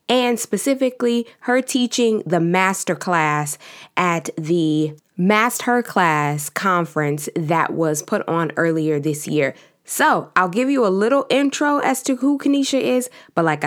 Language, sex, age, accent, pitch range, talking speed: English, female, 20-39, American, 165-255 Hz, 145 wpm